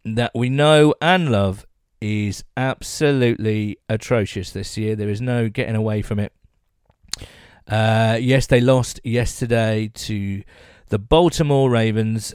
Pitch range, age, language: 110-155 Hz, 40-59, English